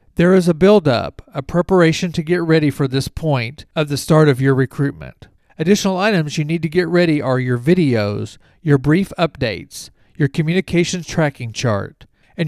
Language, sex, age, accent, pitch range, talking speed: English, male, 40-59, American, 135-175 Hz, 175 wpm